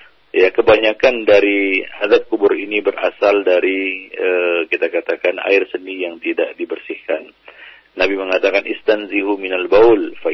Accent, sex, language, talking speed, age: native, male, Indonesian, 130 wpm, 40-59